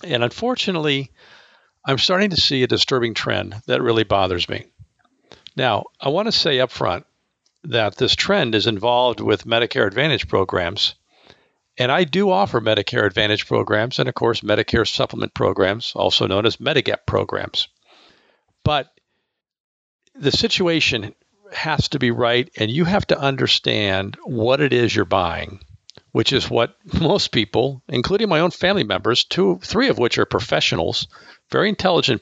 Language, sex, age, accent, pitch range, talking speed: English, male, 50-69, American, 110-165 Hz, 155 wpm